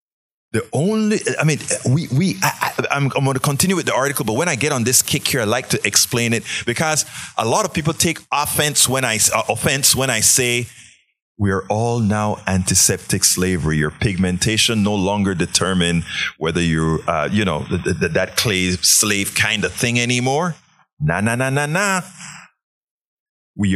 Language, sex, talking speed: English, male, 185 wpm